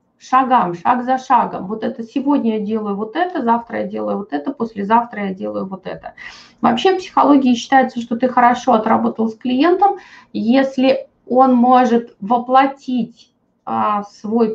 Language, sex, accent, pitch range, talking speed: Russian, female, native, 230-290 Hz, 150 wpm